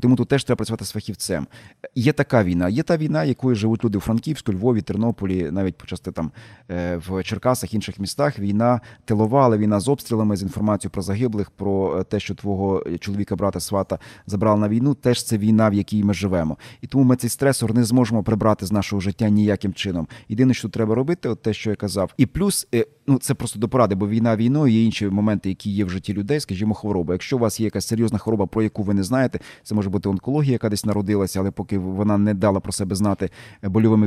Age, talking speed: 30-49, 220 wpm